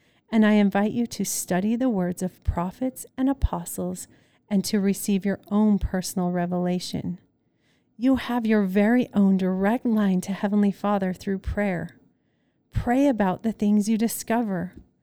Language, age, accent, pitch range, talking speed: English, 40-59, American, 185-225 Hz, 150 wpm